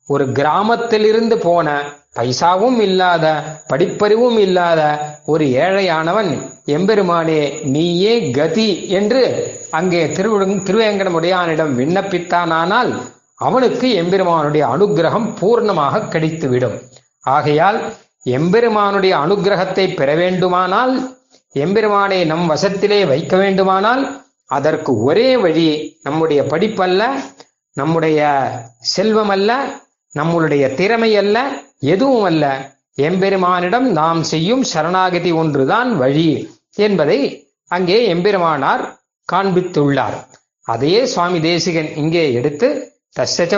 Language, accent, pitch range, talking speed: Tamil, native, 155-205 Hz, 85 wpm